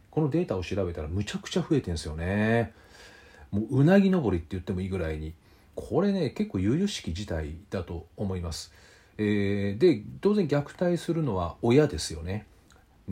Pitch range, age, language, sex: 90-140 Hz, 40-59, Japanese, male